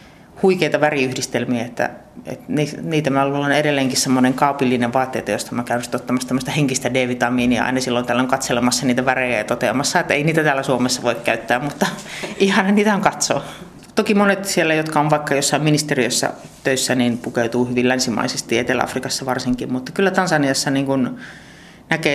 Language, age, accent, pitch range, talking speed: Finnish, 30-49, native, 125-150 Hz, 165 wpm